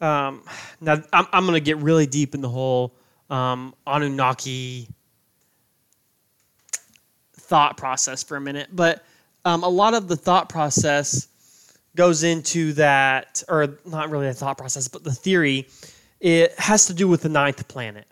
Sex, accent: male, American